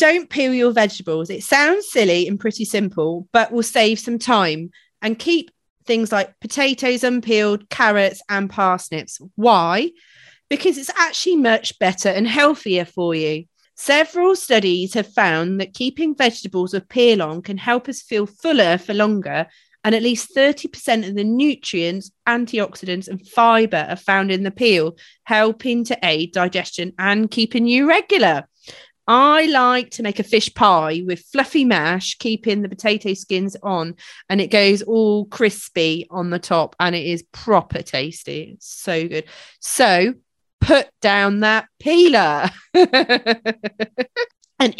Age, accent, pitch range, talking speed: 40-59, British, 185-245 Hz, 150 wpm